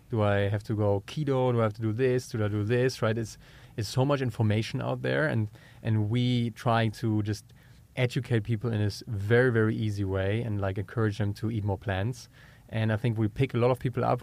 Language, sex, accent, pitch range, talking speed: English, male, German, 105-125 Hz, 235 wpm